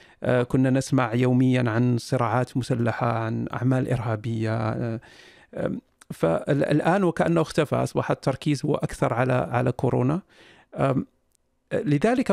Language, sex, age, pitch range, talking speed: Arabic, male, 50-69, 130-160 Hz, 95 wpm